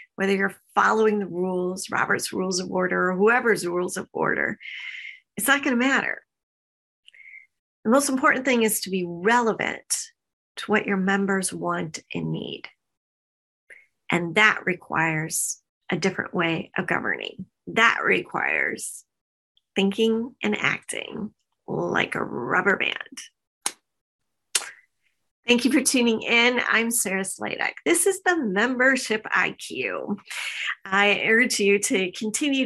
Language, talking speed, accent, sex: English, 125 wpm, American, female